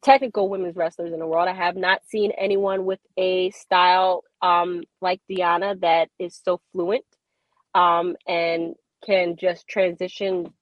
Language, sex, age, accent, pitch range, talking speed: English, female, 20-39, American, 175-210 Hz, 145 wpm